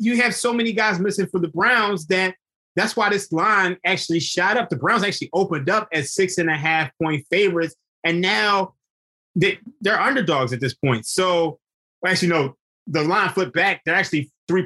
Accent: American